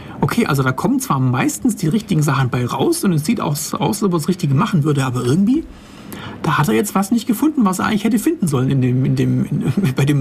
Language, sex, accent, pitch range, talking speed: German, male, German, 145-205 Hz, 260 wpm